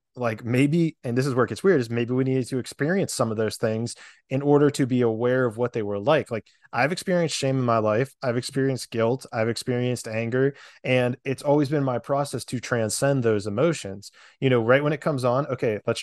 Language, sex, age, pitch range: English, male, 20-39, 110-135 Hz